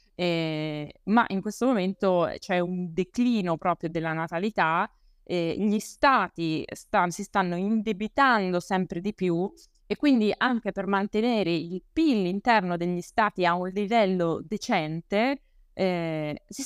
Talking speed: 135 wpm